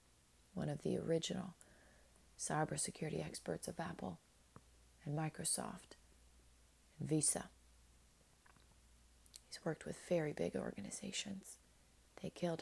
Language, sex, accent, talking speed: English, female, American, 95 wpm